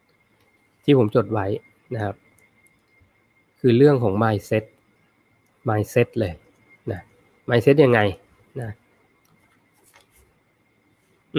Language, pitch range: Thai, 110-135 Hz